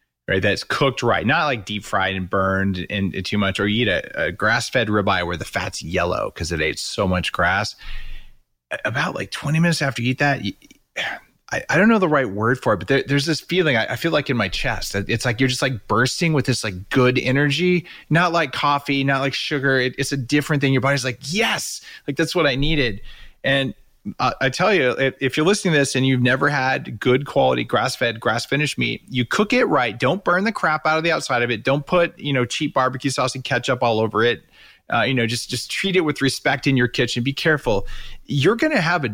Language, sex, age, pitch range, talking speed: English, male, 30-49, 110-145 Hz, 230 wpm